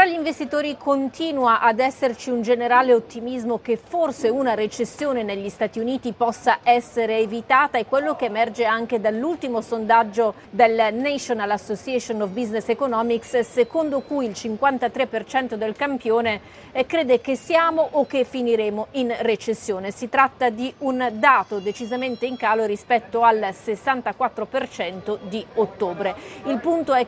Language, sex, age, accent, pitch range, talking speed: Italian, female, 40-59, native, 215-255 Hz, 135 wpm